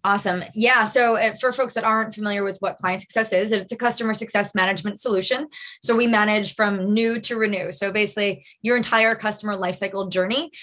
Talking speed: 185 wpm